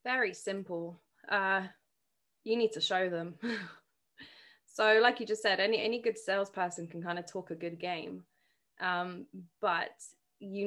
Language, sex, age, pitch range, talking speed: English, female, 20-39, 190-240 Hz, 150 wpm